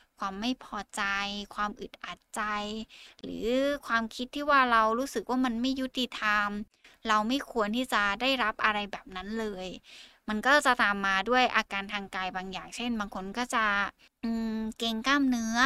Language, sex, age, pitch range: Thai, female, 20-39, 195-225 Hz